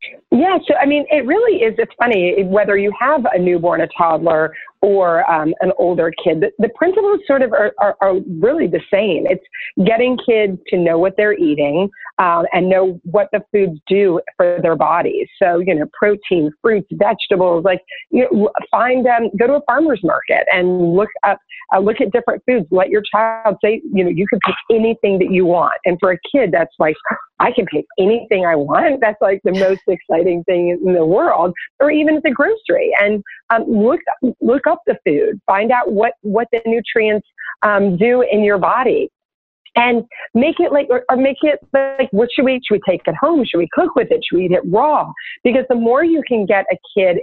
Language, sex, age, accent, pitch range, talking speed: English, female, 40-59, American, 185-250 Hz, 210 wpm